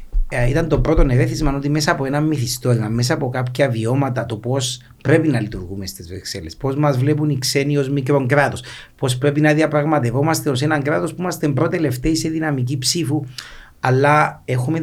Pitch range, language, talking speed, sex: 120-150 Hz, Greek, 175 wpm, male